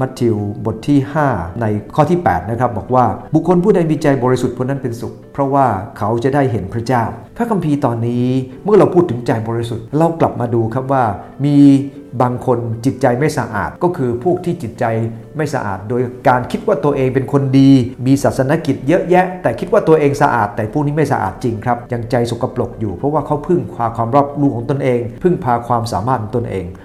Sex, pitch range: male, 115-140 Hz